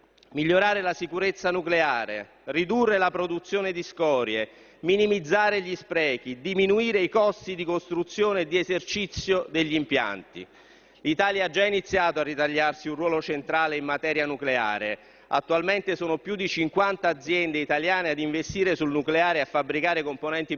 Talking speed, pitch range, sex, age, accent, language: 145 wpm, 155-200 Hz, male, 40-59, native, Italian